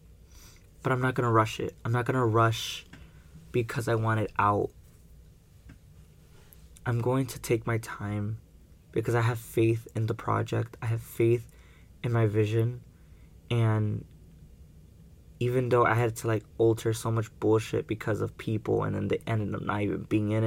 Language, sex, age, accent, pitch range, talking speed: English, male, 20-39, American, 85-115 Hz, 175 wpm